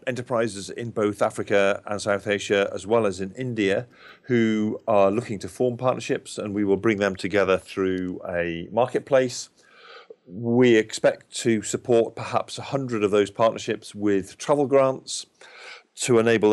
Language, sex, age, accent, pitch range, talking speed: English, male, 40-59, British, 100-115 Hz, 150 wpm